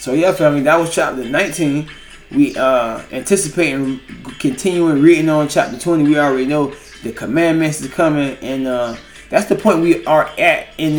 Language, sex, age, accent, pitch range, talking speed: English, male, 20-39, American, 130-165 Hz, 170 wpm